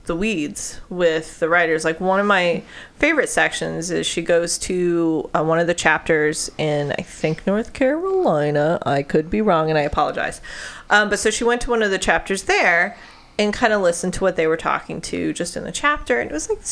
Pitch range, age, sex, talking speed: 170-215 Hz, 30-49, female, 220 wpm